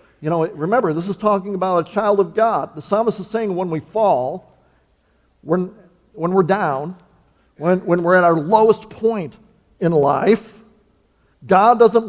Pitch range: 175-215 Hz